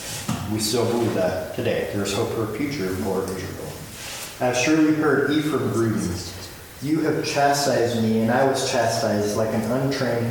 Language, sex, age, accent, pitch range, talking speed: English, male, 30-49, American, 110-135 Hz, 180 wpm